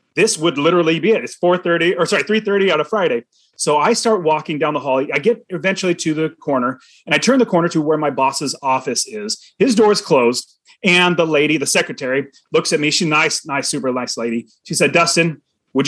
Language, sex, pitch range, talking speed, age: English, male, 150-210 Hz, 225 wpm, 30-49